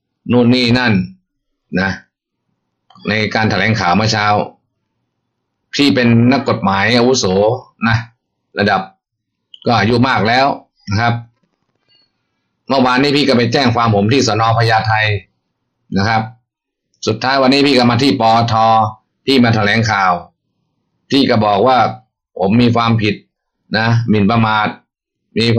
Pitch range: 110-130 Hz